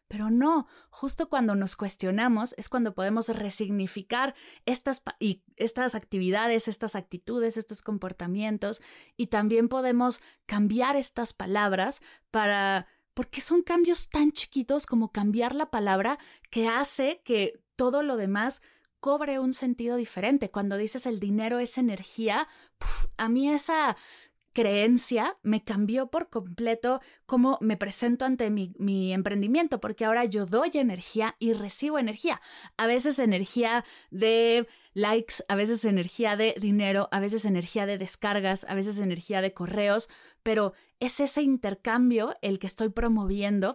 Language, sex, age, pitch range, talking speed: Spanish, female, 20-39, 200-245 Hz, 135 wpm